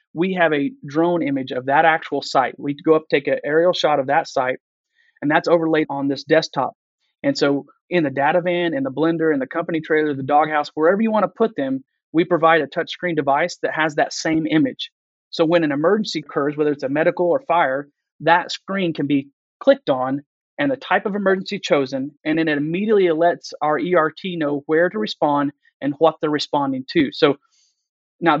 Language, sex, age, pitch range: English, male, 30-49, 145-175 Hz